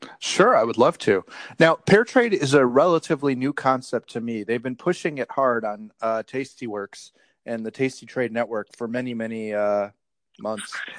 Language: English